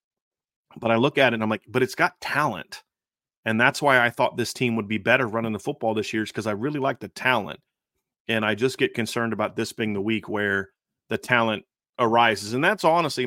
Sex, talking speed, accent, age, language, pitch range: male, 230 wpm, American, 30-49, English, 105-125 Hz